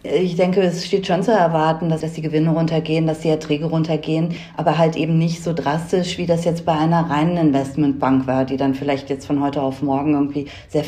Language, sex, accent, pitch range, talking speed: German, female, German, 140-160 Hz, 215 wpm